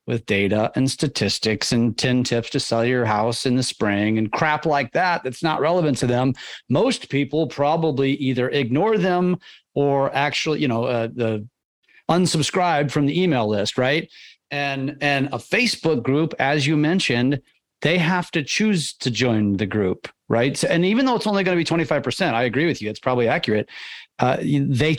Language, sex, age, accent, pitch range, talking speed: English, male, 40-59, American, 120-155 Hz, 180 wpm